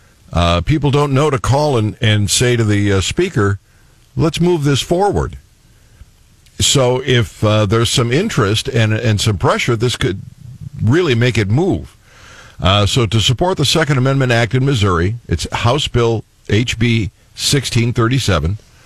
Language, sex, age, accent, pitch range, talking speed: English, male, 60-79, American, 100-130 Hz, 155 wpm